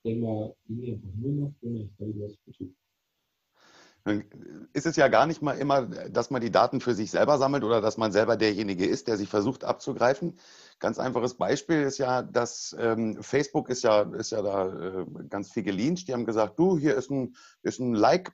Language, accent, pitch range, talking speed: German, German, 115-150 Hz, 175 wpm